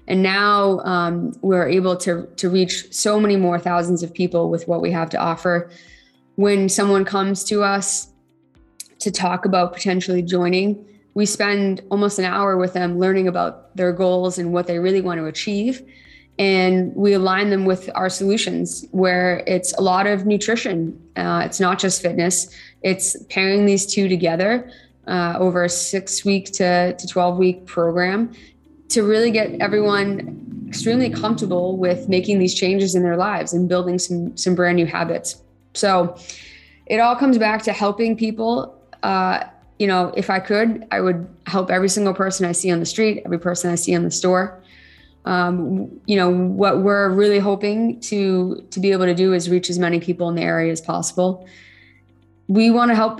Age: 20-39